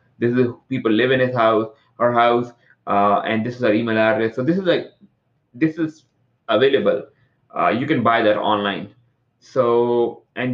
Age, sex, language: 30-49, male, English